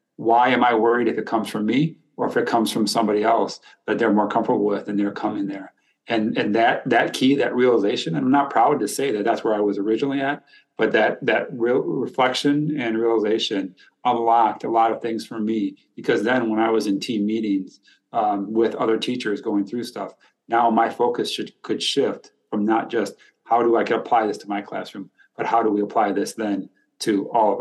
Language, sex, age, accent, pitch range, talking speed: English, male, 30-49, American, 105-130 Hz, 220 wpm